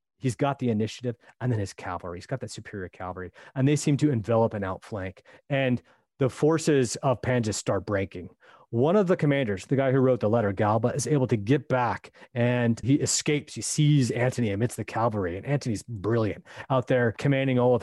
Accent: American